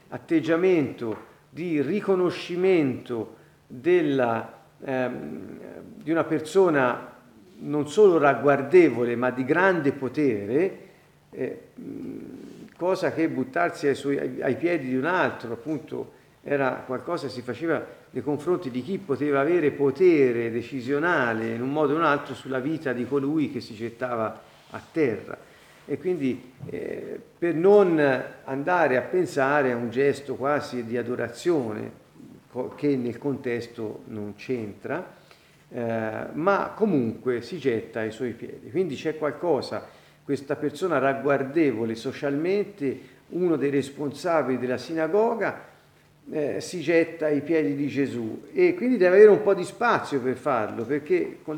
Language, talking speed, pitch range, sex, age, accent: Italian, 135 wpm, 125-170 Hz, male, 50-69, native